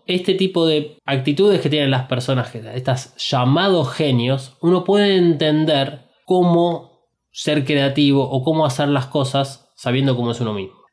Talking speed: 150 wpm